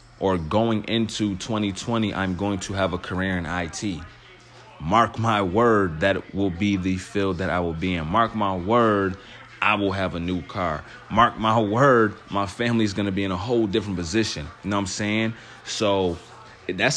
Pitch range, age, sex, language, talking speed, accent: 95-115 Hz, 20-39, male, English, 185 wpm, American